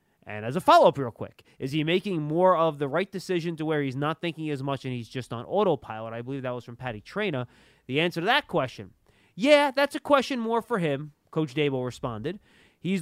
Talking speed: 230 wpm